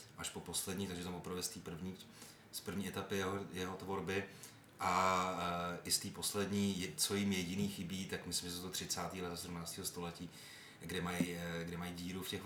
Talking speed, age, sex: 200 wpm, 30-49, male